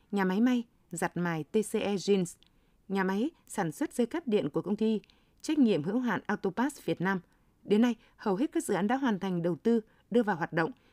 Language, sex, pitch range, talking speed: Vietnamese, female, 190-240 Hz, 220 wpm